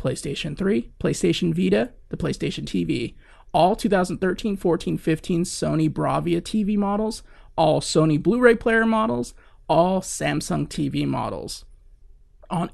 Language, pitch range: English, 160-205 Hz